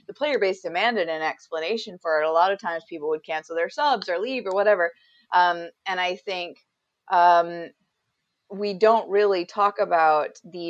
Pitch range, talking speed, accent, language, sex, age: 160-205 Hz, 180 wpm, American, English, female, 30-49